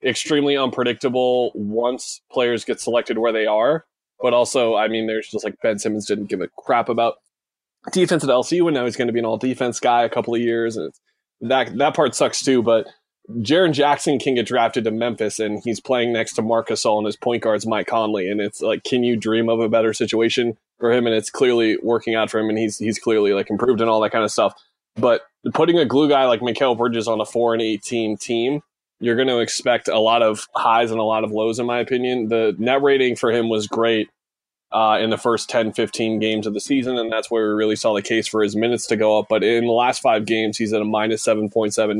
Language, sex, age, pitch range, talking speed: English, male, 20-39, 110-120 Hz, 245 wpm